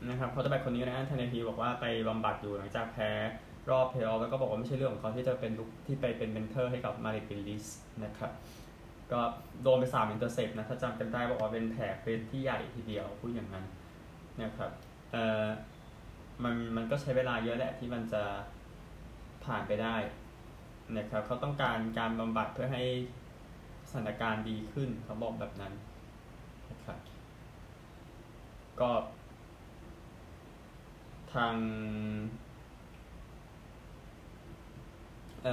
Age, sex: 20-39, male